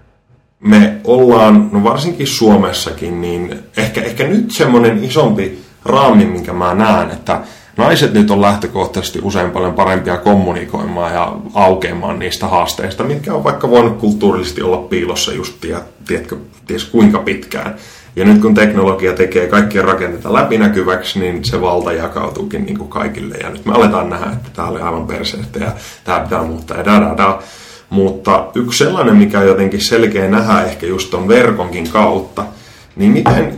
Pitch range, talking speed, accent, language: 90-120 Hz, 150 wpm, native, Finnish